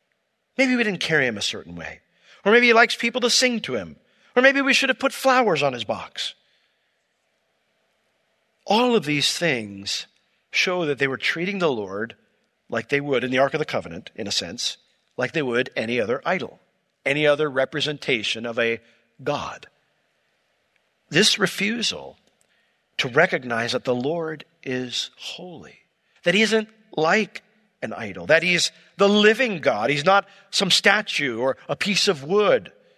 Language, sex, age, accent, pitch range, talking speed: English, male, 50-69, American, 130-215 Hz, 165 wpm